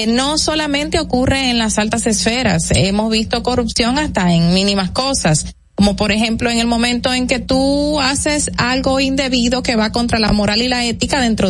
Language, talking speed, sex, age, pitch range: Spanish, 185 wpm, female, 30-49, 195-255 Hz